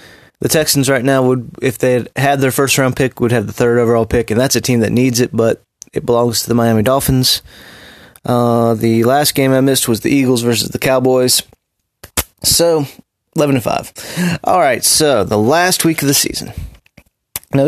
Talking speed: 195 wpm